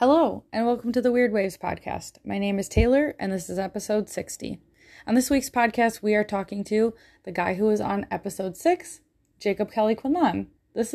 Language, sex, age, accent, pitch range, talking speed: English, female, 20-39, American, 190-230 Hz, 195 wpm